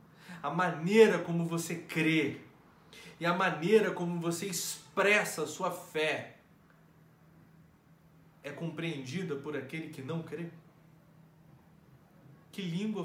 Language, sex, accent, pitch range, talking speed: Portuguese, male, Brazilian, 170-245 Hz, 105 wpm